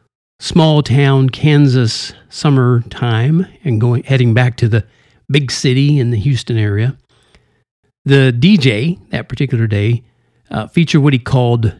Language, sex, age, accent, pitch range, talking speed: English, male, 50-69, American, 120-150 Hz, 125 wpm